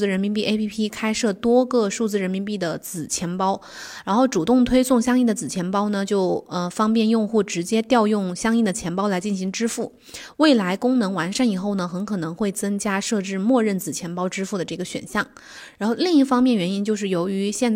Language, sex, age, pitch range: Chinese, female, 20-39, 190-235 Hz